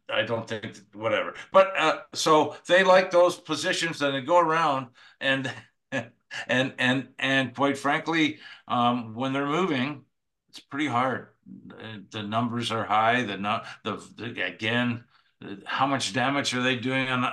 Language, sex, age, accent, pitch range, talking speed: English, male, 50-69, American, 115-140 Hz, 155 wpm